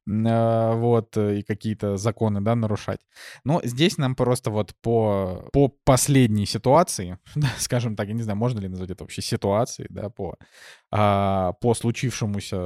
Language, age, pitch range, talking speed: Russian, 20-39, 105-130 Hz, 140 wpm